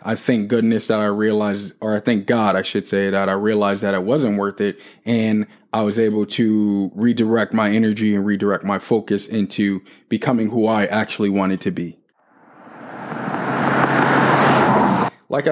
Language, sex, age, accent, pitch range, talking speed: English, male, 20-39, American, 105-135 Hz, 160 wpm